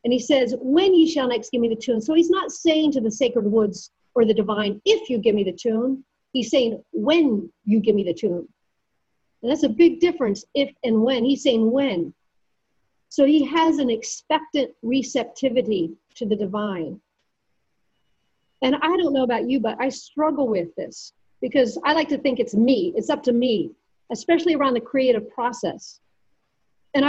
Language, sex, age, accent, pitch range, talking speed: English, female, 50-69, American, 225-280 Hz, 185 wpm